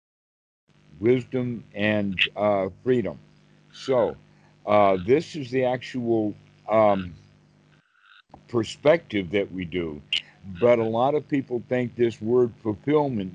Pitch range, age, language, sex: 100-125 Hz, 60-79, English, male